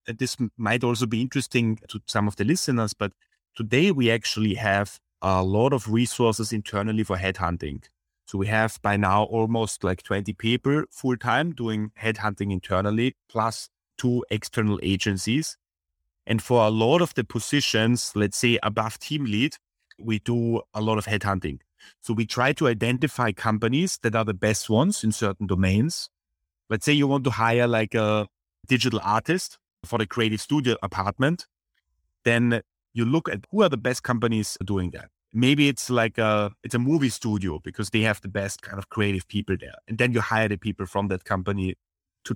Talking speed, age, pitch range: 175 wpm, 30-49, 100-120 Hz